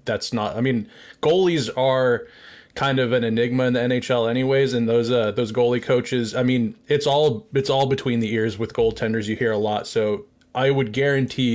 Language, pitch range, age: English, 120-145 Hz, 20-39